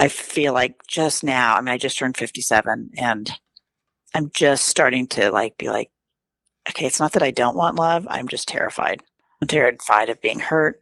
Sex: female